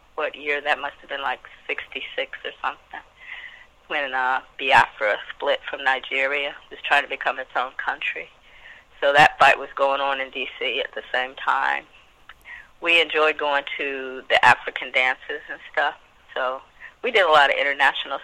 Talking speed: 170 wpm